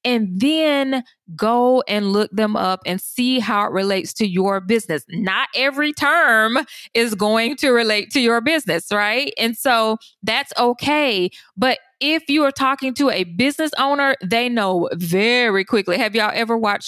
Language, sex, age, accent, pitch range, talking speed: English, female, 20-39, American, 205-275 Hz, 165 wpm